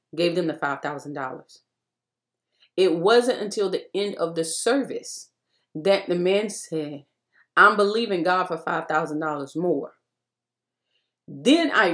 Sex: female